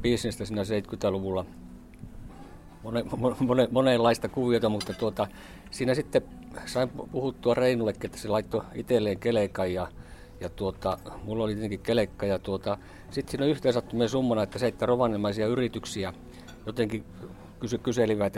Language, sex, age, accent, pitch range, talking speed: Finnish, male, 50-69, native, 95-120 Hz, 125 wpm